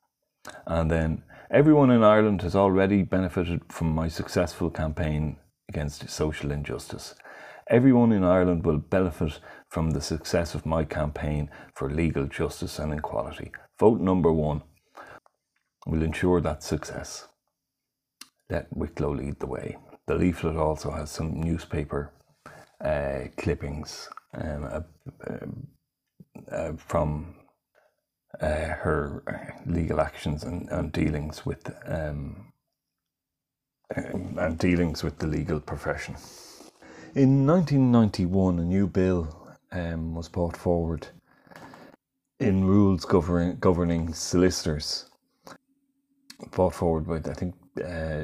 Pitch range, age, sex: 80-95 Hz, 30-49, male